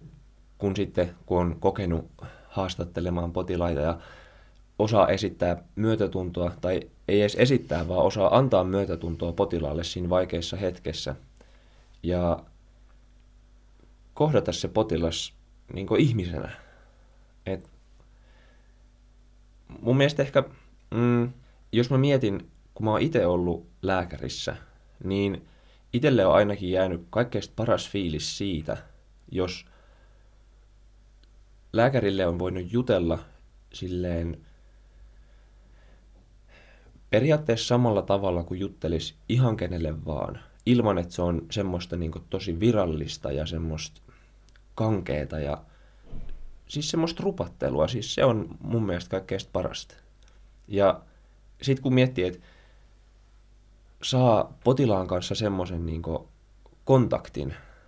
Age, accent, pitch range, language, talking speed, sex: 20-39, native, 85-115 Hz, Finnish, 105 wpm, male